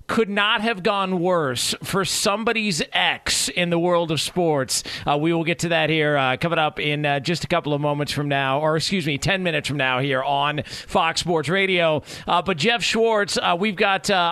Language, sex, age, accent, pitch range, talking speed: English, male, 40-59, American, 145-200 Hz, 220 wpm